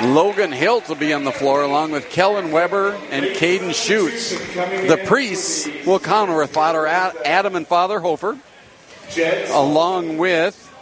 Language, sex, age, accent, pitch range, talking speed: English, male, 50-69, American, 155-195 Hz, 145 wpm